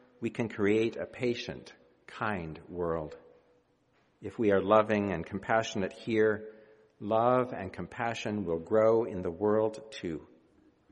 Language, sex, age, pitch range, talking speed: English, male, 50-69, 90-125 Hz, 125 wpm